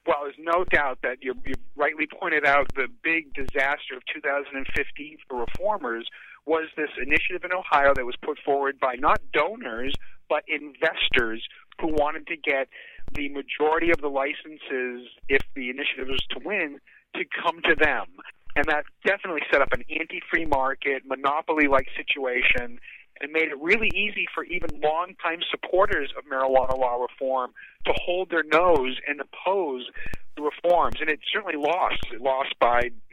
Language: English